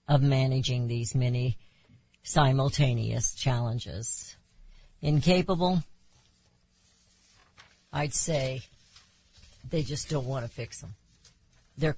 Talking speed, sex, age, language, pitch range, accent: 85 wpm, female, 60-79, English, 115-155 Hz, American